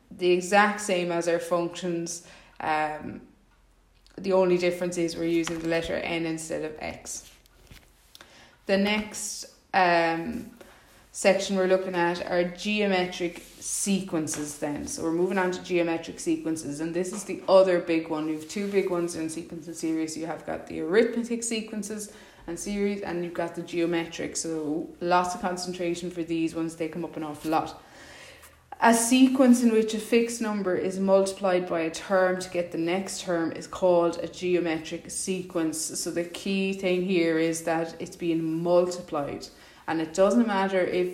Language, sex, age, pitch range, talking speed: English, female, 20-39, 160-185 Hz, 170 wpm